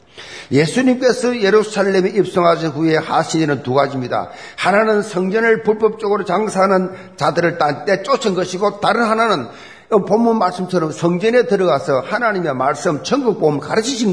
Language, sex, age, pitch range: Korean, male, 50-69, 175-230 Hz